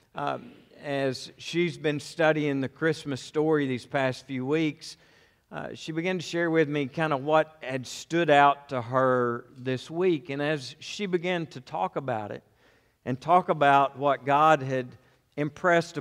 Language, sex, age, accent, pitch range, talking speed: English, male, 50-69, American, 125-155 Hz, 165 wpm